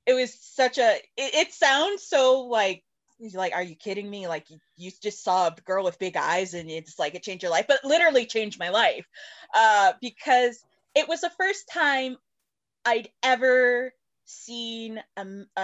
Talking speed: 180 wpm